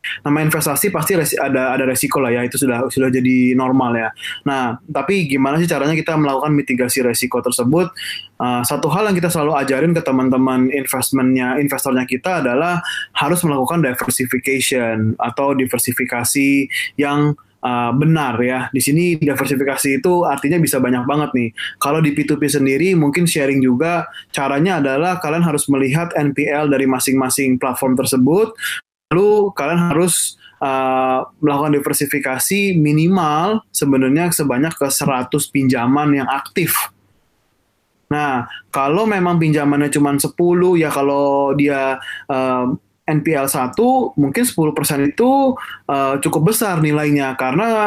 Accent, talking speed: native, 135 wpm